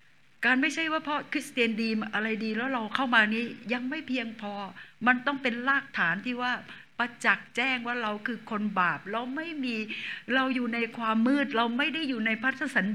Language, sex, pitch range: Thai, female, 195-255 Hz